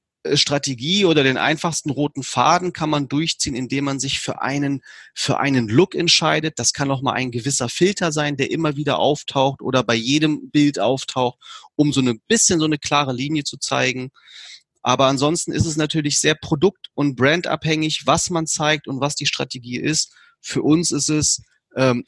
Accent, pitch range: German, 125-155 Hz